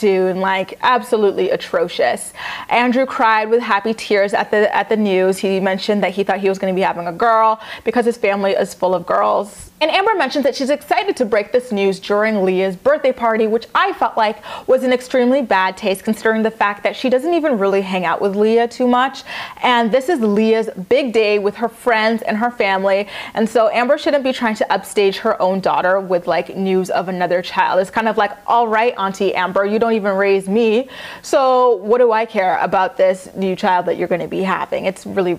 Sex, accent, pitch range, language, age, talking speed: female, American, 195-255 Hz, English, 20-39, 220 wpm